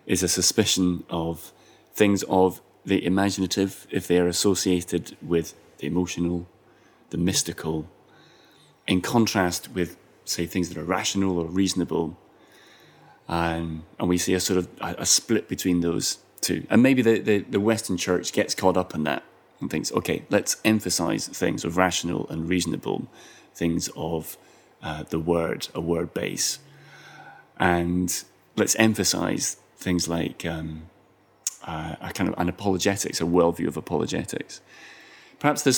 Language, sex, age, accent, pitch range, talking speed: English, male, 30-49, British, 85-100 Hz, 145 wpm